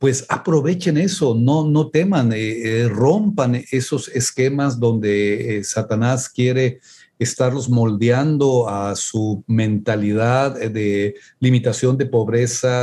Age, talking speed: 50-69, 110 wpm